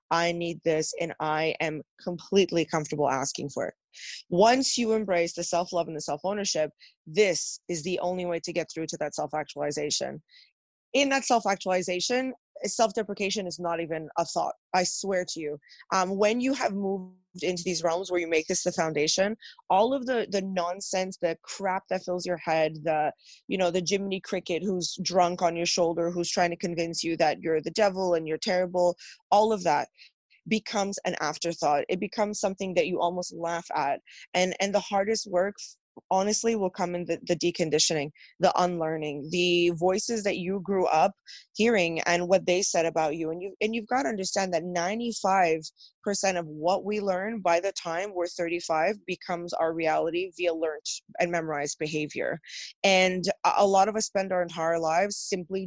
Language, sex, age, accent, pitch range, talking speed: English, female, 20-39, American, 165-195 Hz, 180 wpm